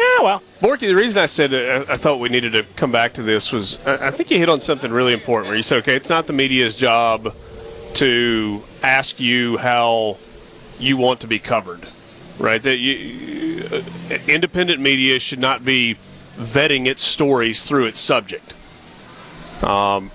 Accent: American